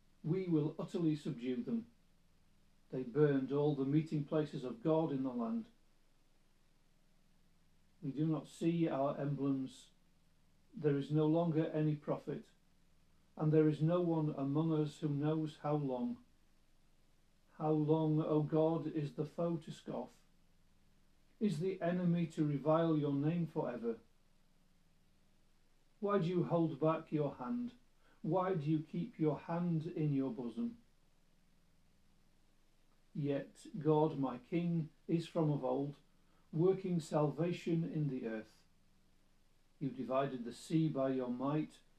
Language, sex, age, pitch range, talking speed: English, male, 50-69, 140-170 Hz, 130 wpm